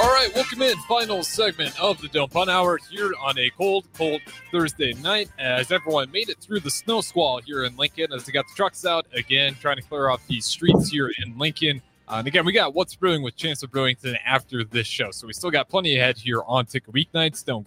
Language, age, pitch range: English, 20-39, 125-160 Hz